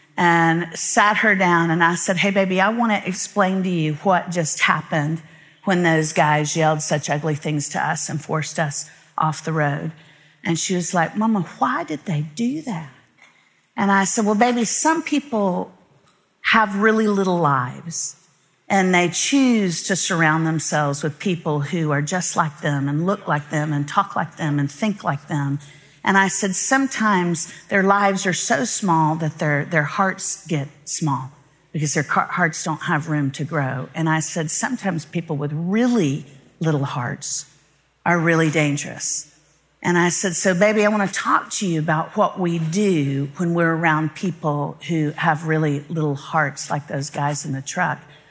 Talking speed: 180 wpm